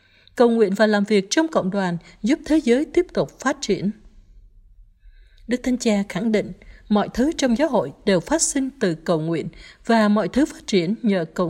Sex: female